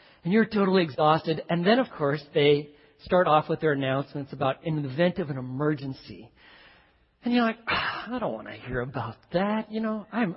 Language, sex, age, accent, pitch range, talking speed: English, male, 40-59, American, 160-230 Hz, 195 wpm